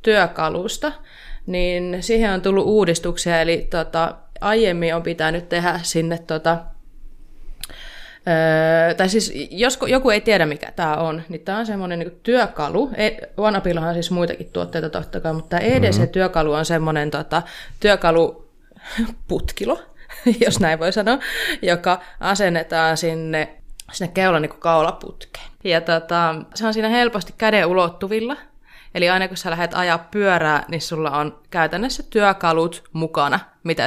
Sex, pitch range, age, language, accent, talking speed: female, 160-205 Hz, 20-39, Finnish, native, 140 wpm